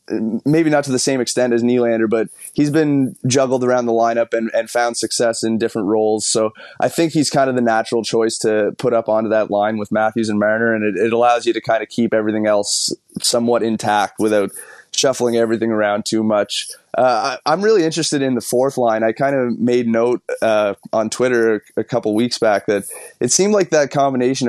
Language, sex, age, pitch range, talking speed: English, male, 20-39, 110-130 Hz, 215 wpm